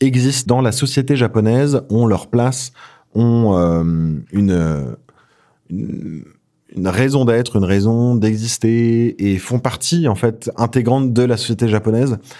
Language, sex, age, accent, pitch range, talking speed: French, male, 20-39, French, 95-125 Hz, 135 wpm